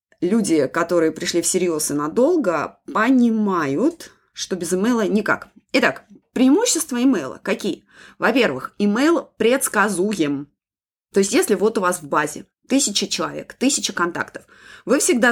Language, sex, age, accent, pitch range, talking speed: Russian, female, 20-39, native, 190-250 Hz, 125 wpm